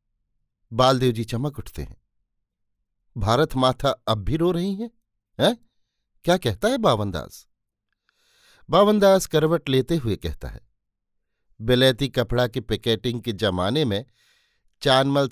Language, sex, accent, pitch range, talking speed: Hindi, male, native, 110-145 Hz, 120 wpm